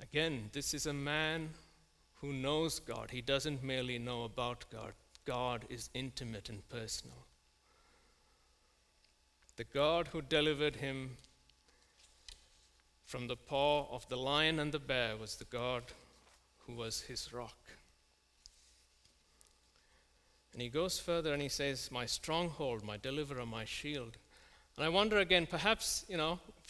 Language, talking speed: English, 135 wpm